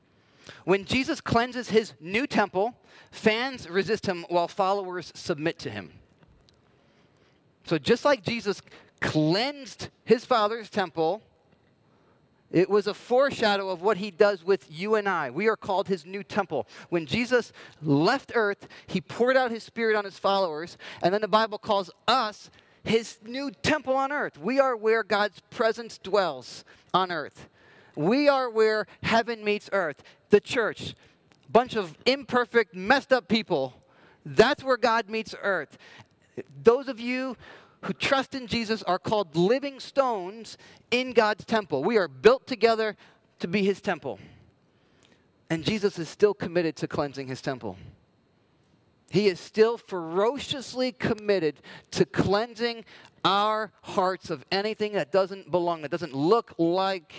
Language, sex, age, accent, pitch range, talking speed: English, male, 40-59, American, 180-230 Hz, 145 wpm